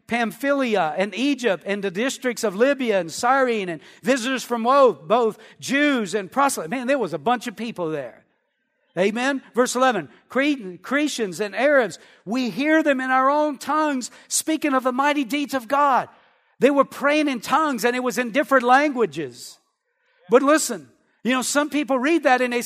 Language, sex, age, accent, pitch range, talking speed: English, male, 50-69, American, 245-295 Hz, 175 wpm